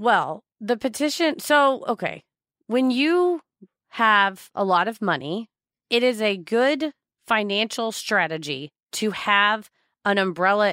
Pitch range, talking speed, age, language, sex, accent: 170-225 Hz, 115 wpm, 30-49, English, female, American